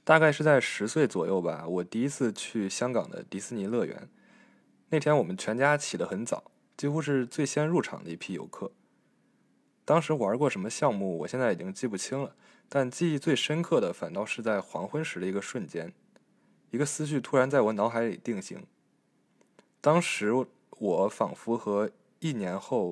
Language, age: Chinese, 20-39